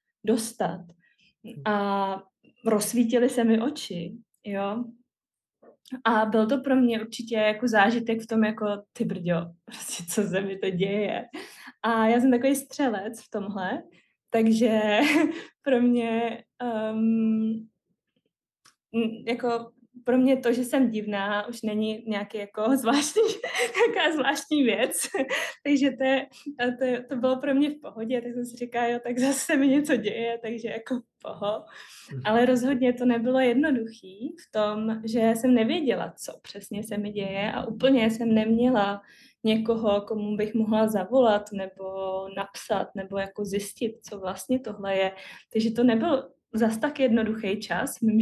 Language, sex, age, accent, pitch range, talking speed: Czech, female, 20-39, native, 210-250 Hz, 145 wpm